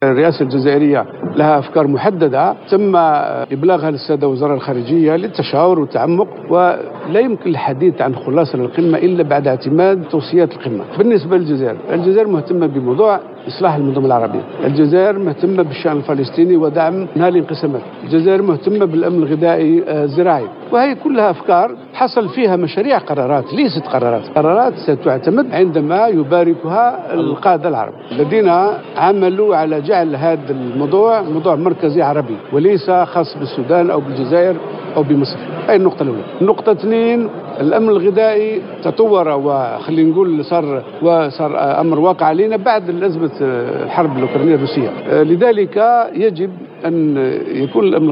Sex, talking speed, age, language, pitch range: male, 125 wpm, 60-79, Arabic, 145-190 Hz